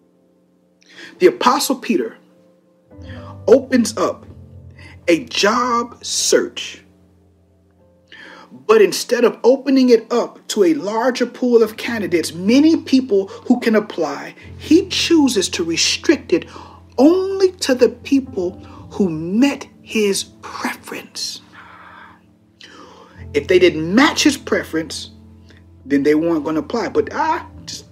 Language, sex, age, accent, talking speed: English, male, 50-69, American, 115 wpm